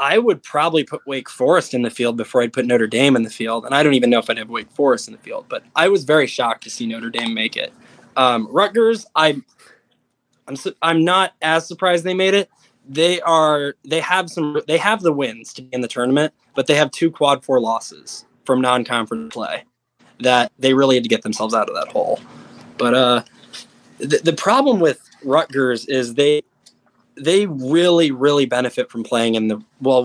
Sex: male